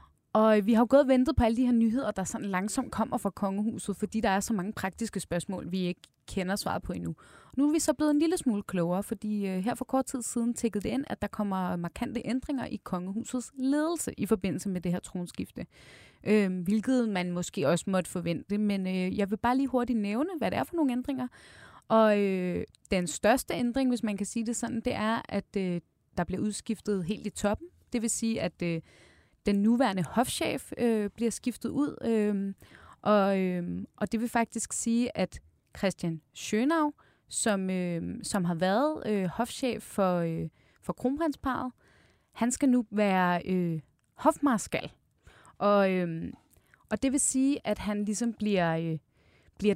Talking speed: 190 wpm